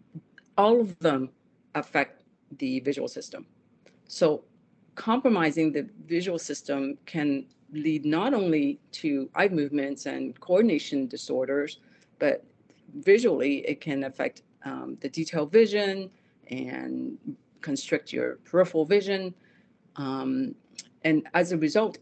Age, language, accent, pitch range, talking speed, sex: 40-59, English, American, 145-195 Hz, 110 wpm, female